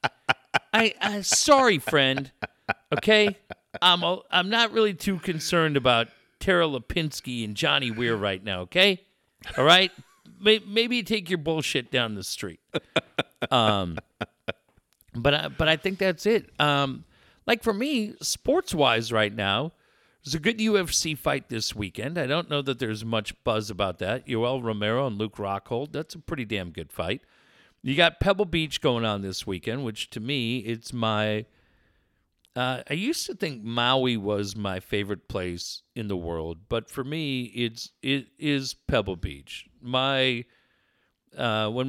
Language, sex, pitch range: English, male, 105-160 Hz